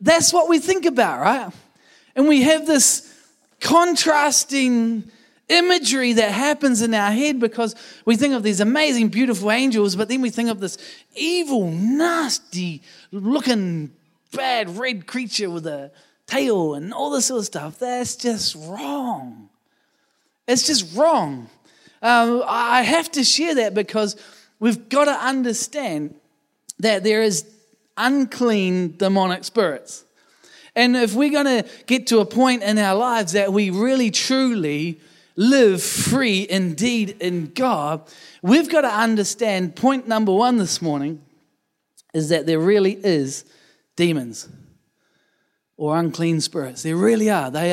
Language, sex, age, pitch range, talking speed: English, male, 20-39, 175-260 Hz, 140 wpm